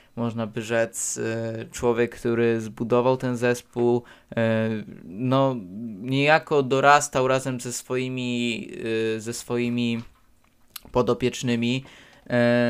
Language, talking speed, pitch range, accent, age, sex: Polish, 80 wpm, 120-130 Hz, native, 20-39, male